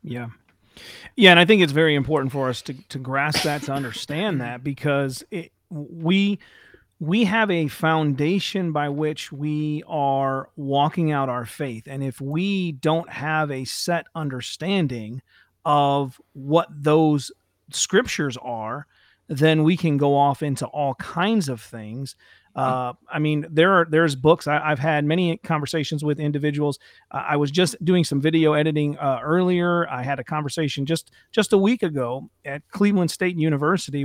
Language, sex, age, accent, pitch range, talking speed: English, male, 40-59, American, 140-170 Hz, 160 wpm